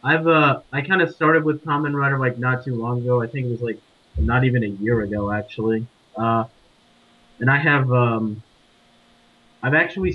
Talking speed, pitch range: 190 wpm, 115-130 Hz